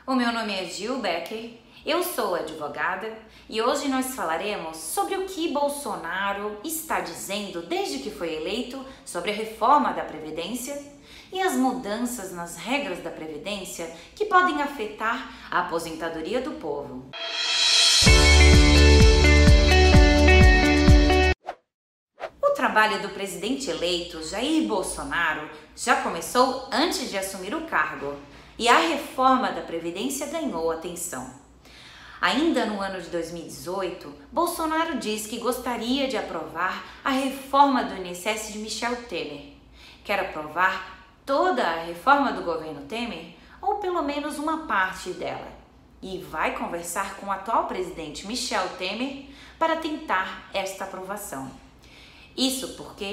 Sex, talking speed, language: female, 125 wpm, Portuguese